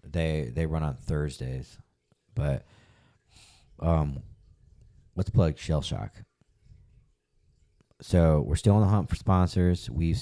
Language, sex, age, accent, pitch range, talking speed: English, male, 30-49, American, 75-100 Hz, 110 wpm